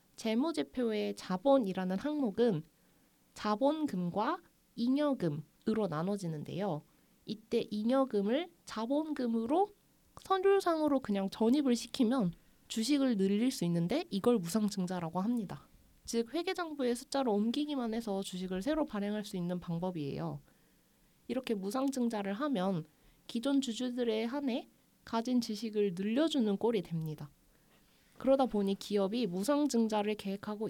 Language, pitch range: Korean, 190-255 Hz